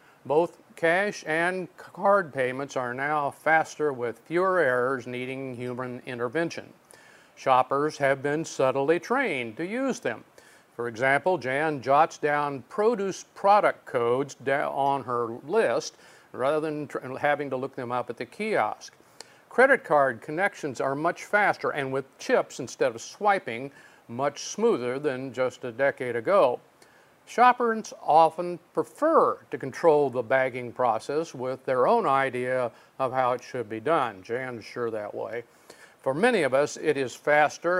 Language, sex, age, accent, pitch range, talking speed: English, male, 50-69, American, 130-175 Hz, 145 wpm